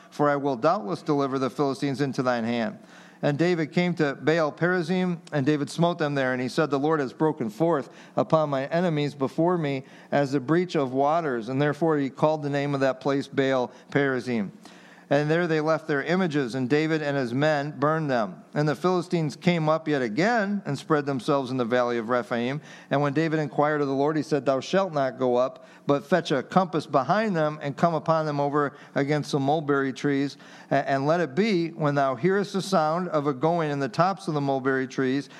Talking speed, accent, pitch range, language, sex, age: 210 wpm, American, 135-160 Hz, English, male, 50-69